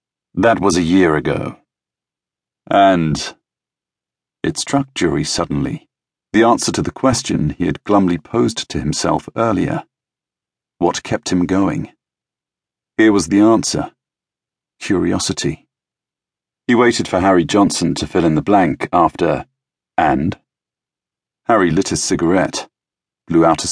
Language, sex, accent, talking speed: English, male, British, 125 wpm